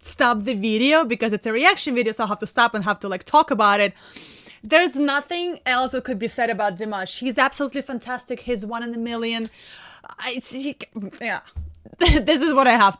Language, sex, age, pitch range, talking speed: English, female, 20-39, 210-255 Hz, 210 wpm